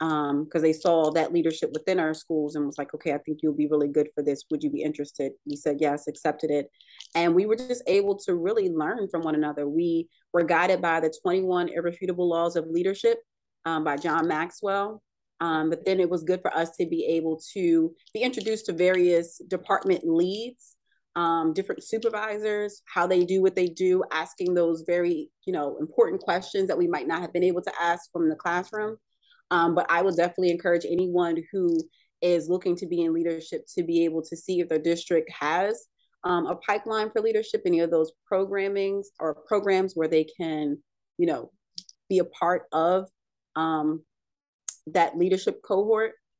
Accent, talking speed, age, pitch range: American, 190 wpm, 30-49, 160-210 Hz